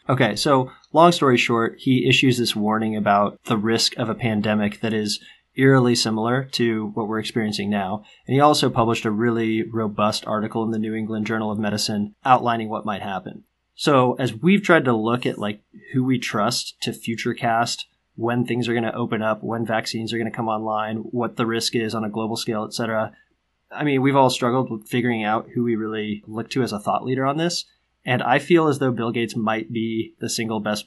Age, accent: 20-39, American